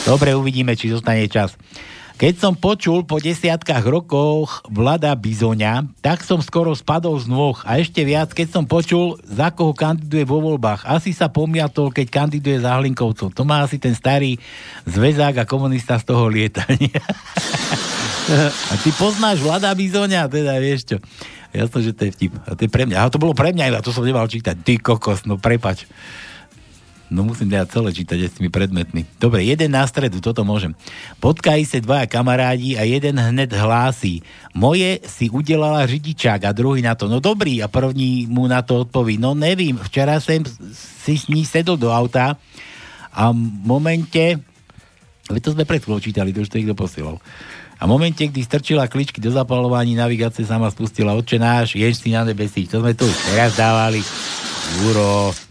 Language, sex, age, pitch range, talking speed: Slovak, male, 60-79, 110-150 Hz, 175 wpm